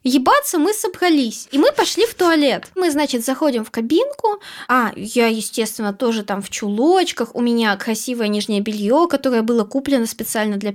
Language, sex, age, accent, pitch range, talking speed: Russian, female, 20-39, native, 250-355 Hz, 165 wpm